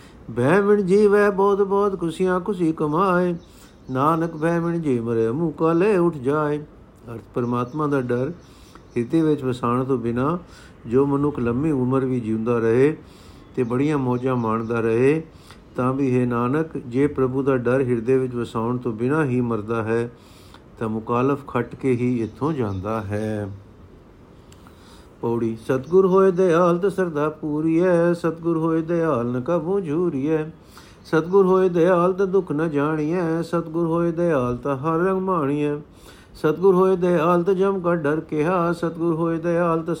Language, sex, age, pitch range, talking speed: Punjabi, male, 50-69, 125-170 Hz, 145 wpm